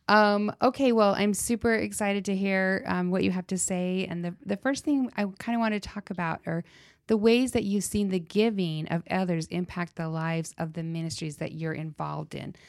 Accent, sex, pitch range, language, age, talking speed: American, female, 160-190 Hz, English, 30-49, 220 wpm